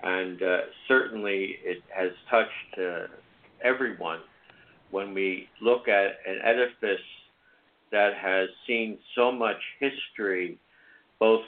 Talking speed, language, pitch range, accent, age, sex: 110 wpm, English, 95-120 Hz, American, 60-79, male